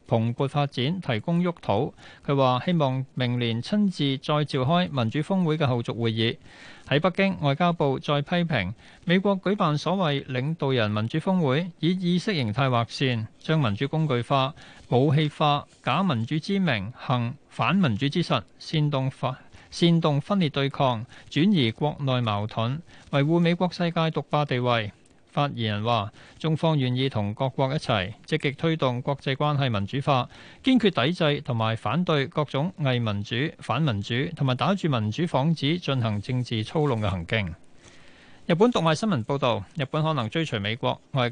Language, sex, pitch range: Chinese, male, 125-165 Hz